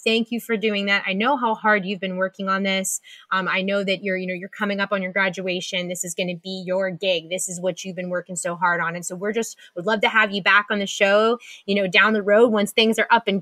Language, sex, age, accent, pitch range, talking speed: English, female, 20-39, American, 185-210 Hz, 295 wpm